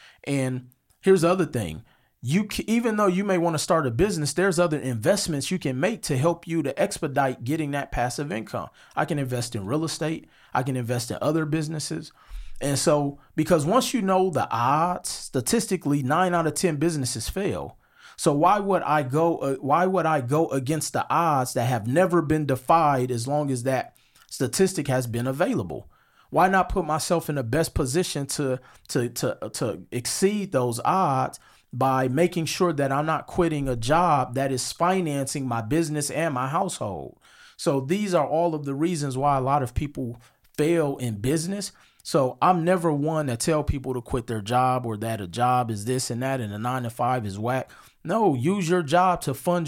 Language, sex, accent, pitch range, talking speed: English, male, American, 130-170 Hz, 195 wpm